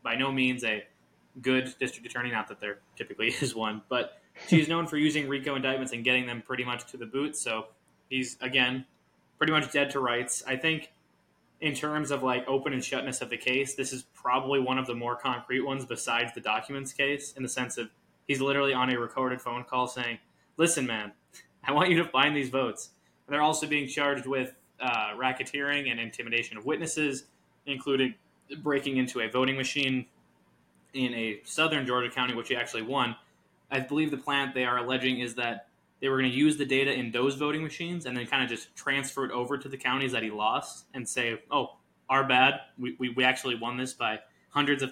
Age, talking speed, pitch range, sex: 20-39, 210 wpm, 125-145 Hz, male